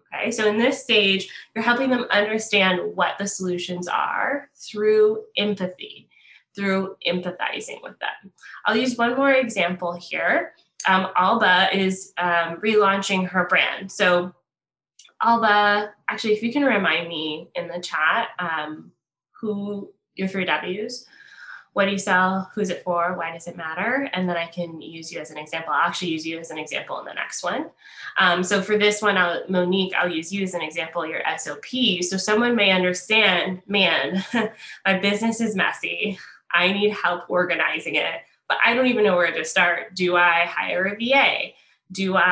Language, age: English, 20-39